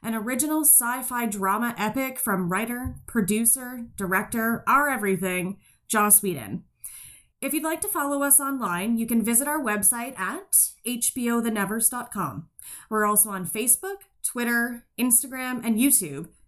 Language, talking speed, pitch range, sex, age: English, 125 wpm, 220-290 Hz, female, 30-49